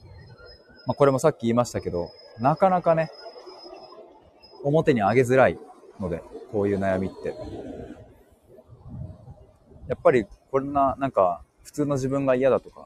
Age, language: 30-49, Japanese